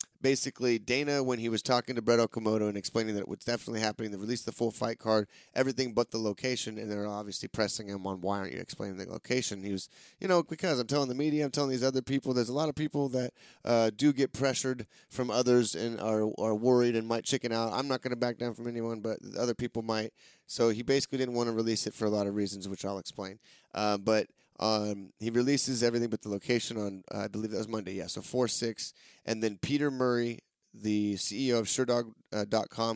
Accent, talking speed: American, 230 wpm